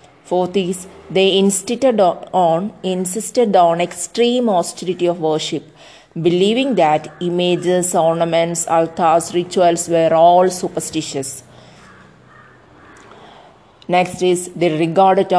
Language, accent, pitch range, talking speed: English, Indian, 170-205 Hz, 90 wpm